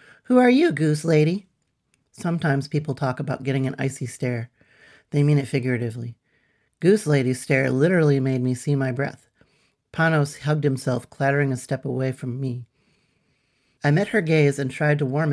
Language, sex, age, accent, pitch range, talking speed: English, male, 40-59, American, 130-155 Hz, 170 wpm